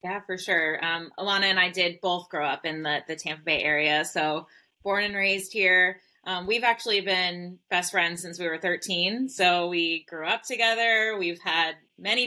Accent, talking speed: American, 195 wpm